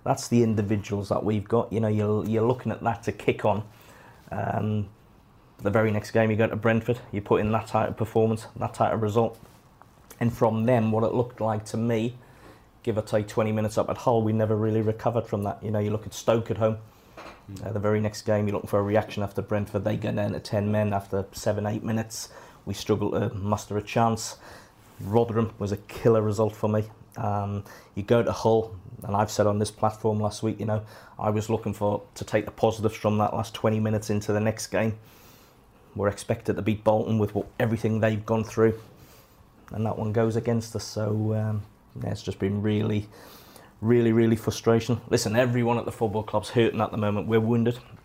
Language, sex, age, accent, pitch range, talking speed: English, male, 30-49, British, 105-115 Hz, 215 wpm